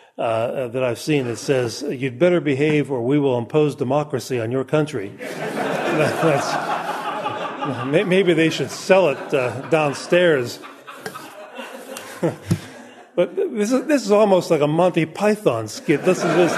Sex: male